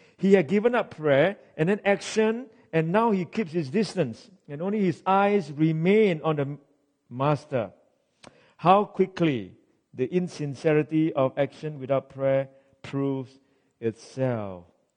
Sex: male